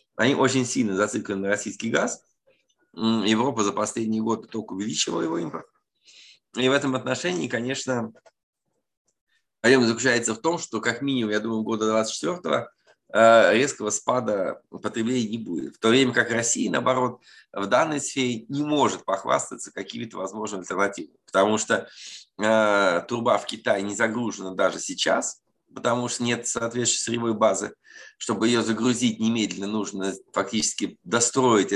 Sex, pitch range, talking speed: male, 105-125 Hz, 140 wpm